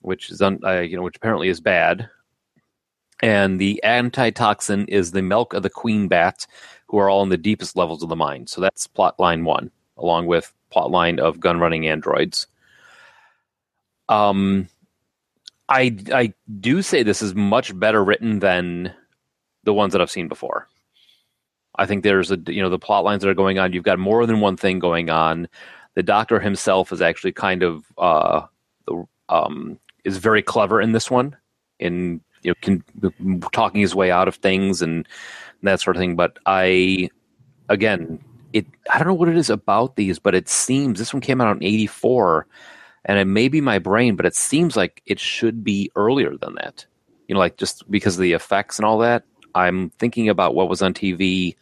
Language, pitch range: English, 90-110 Hz